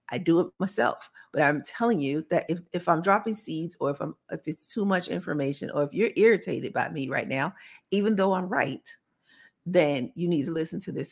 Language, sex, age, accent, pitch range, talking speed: English, female, 40-59, American, 165-215 Hz, 220 wpm